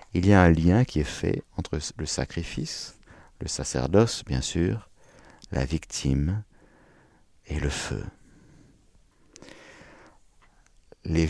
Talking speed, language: 110 wpm, French